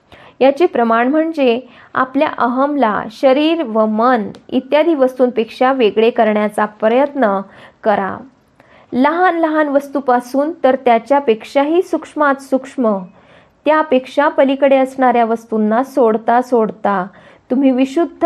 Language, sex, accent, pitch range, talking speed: Marathi, female, native, 225-290 Hz, 95 wpm